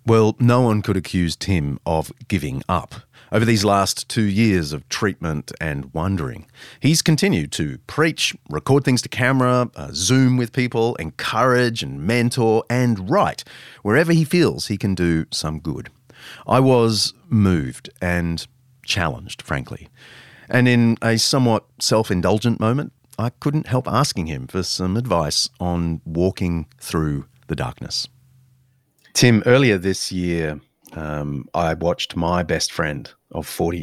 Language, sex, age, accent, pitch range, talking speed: English, male, 40-59, Australian, 85-125 Hz, 140 wpm